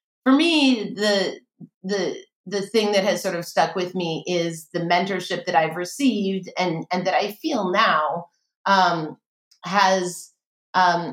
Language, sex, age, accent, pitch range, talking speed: English, female, 30-49, American, 170-215 Hz, 150 wpm